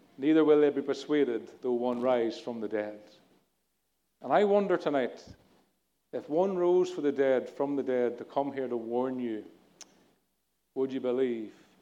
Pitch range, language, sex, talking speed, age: 120-145 Hz, English, male, 170 wpm, 40-59